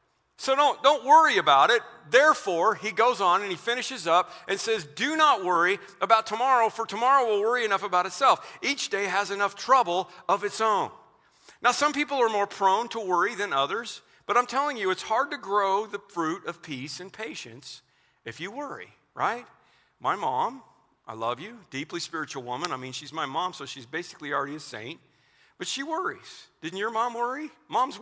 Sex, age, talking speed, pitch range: male, 50-69, 195 wpm, 180-260 Hz